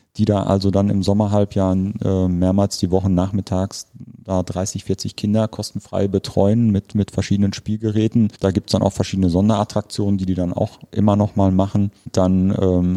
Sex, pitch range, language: male, 90-100 Hz, German